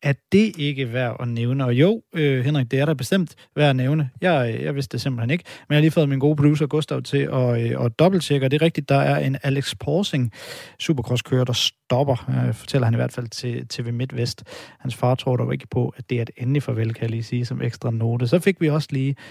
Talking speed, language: 260 wpm, Danish